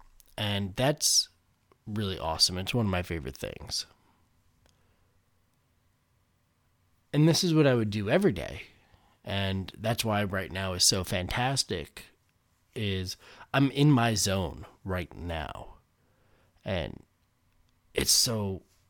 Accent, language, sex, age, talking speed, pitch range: American, English, male, 30-49, 120 wpm, 95-115 Hz